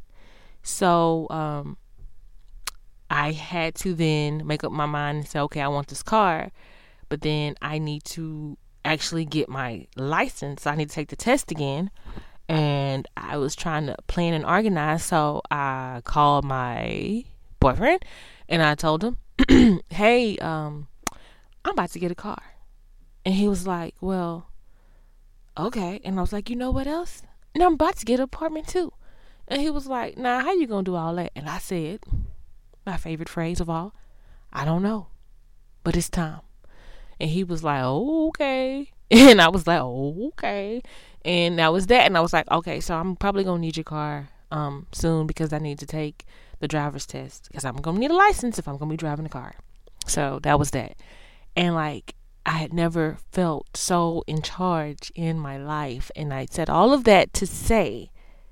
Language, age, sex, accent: English, 20-39, female, American